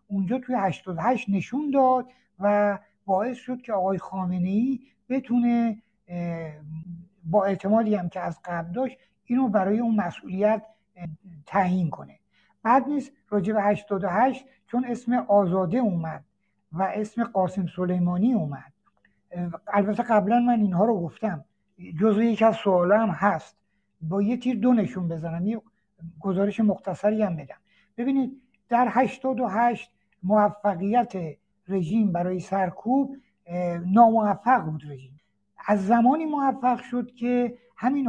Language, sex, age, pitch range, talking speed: Persian, male, 60-79, 175-235 Hz, 120 wpm